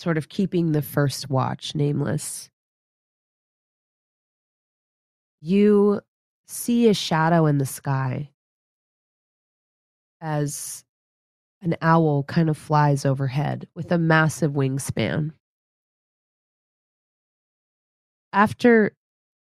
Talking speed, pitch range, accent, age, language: 80 wpm, 145-210 Hz, American, 20-39, English